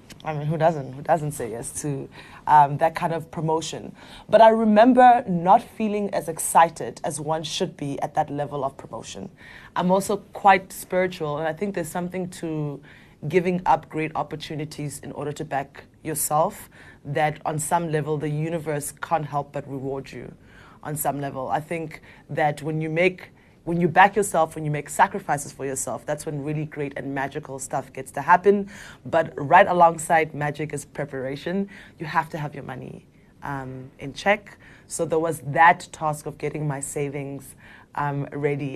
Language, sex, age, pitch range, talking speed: English, female, 20-39, 145-170 Hz, 180 wpm